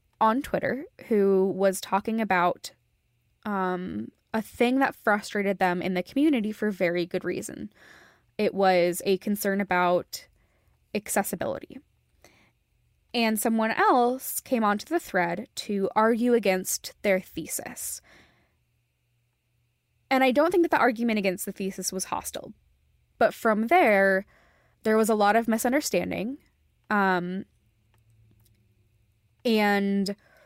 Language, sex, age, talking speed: English, female, 10-29, 115 wpm